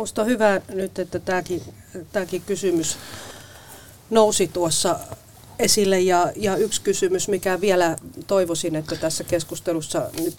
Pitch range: 165-205 Hz